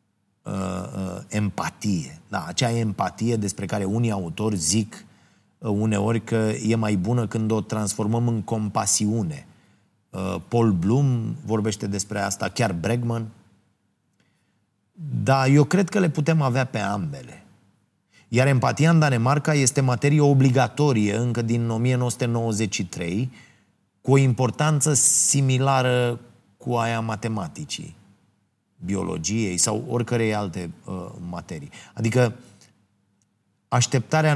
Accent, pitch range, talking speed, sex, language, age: native, 100-130 Hz, 105 wpm, male, Romanian, 30-49